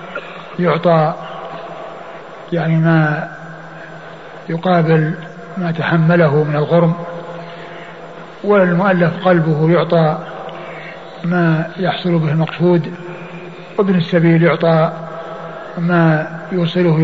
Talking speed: 70 wpm